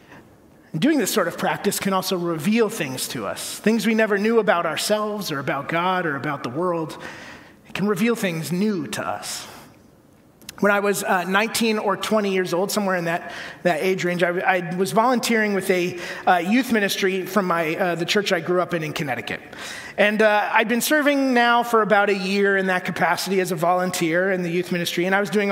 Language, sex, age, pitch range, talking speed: English, male, 30-49, 180-215 Hz, 210 wpm